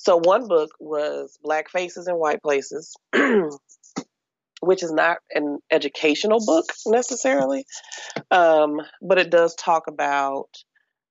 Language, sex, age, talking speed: English, female, 30-49, 120 wpm